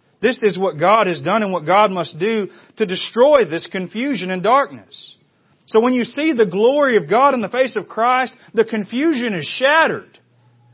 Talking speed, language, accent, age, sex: 190 wpm, English, American, 40-59, male